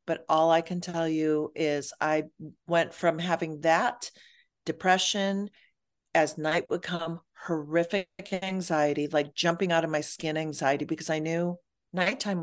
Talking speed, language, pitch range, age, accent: 145 wpm, English, 150-175 Hz, 50-69, American